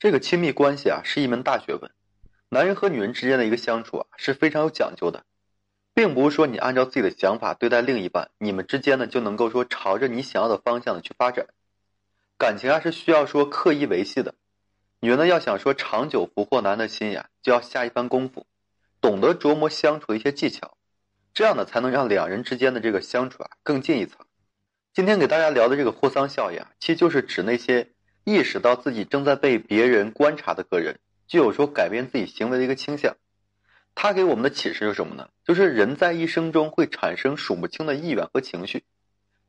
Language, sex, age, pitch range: Chinese, male, 30-49, 105-155 Hz